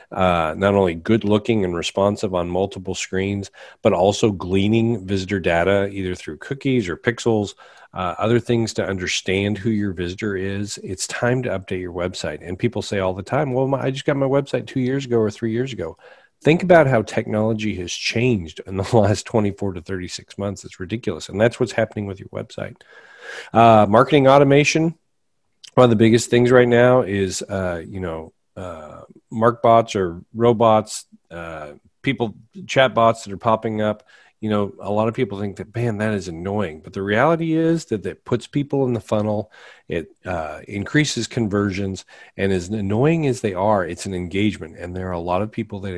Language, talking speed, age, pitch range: English, 190 wpm, 40-59, 95-120 Hz